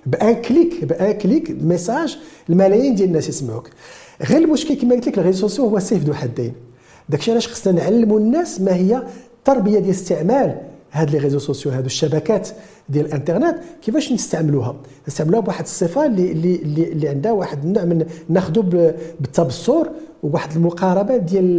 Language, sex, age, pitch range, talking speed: French, male, 50-69, 150-240 Hz, 95 wpm